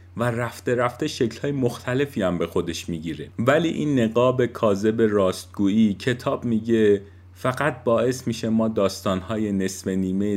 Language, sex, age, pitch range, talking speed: Persian, male, 40-59, 95-120 Hz, 135 wpm